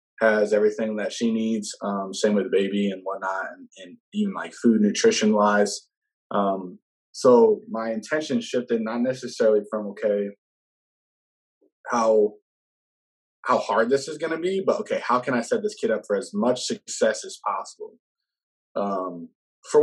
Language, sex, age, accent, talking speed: English, male, 20-39, American, 160 wpm